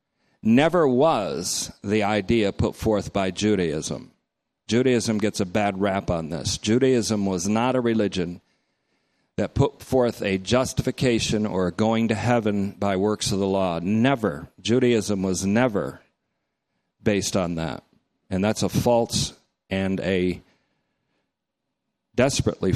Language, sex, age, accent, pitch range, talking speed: English, male, 50-69, American, 100-130 Hz, 125 wpm